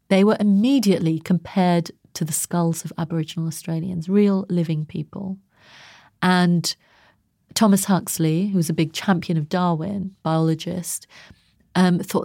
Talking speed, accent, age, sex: 125 wpm, British, 30-49, female